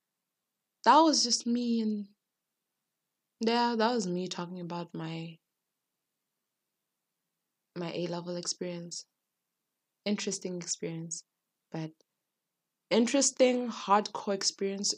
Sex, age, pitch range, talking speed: female, 20-39, 160-220 Hz, 90 wpm